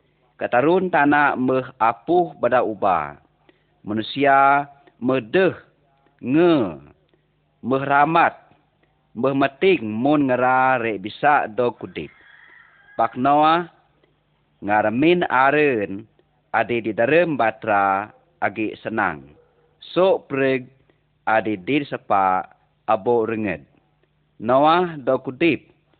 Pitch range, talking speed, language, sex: 105-145 Hz, 90 wpm, Malay, male